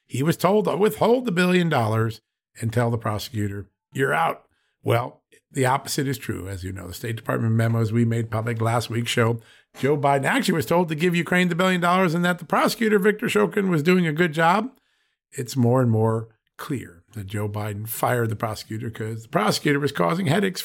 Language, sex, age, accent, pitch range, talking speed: English, male, 50-69, American, 115-165 Hz, 205 wpm